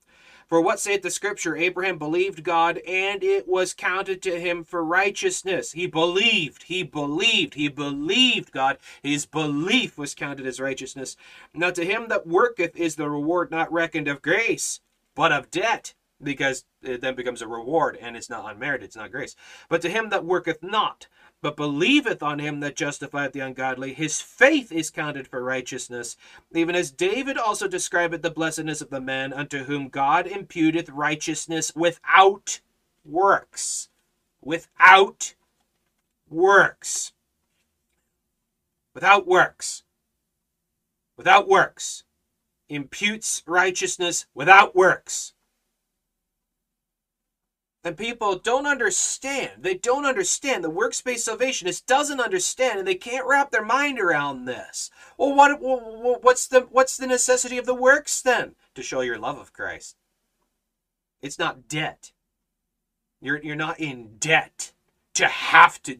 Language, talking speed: English, 140 wpm